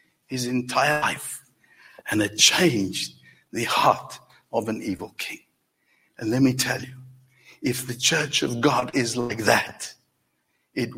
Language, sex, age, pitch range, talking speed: English, male, 60-79, 130-165 Hz, 140 wpm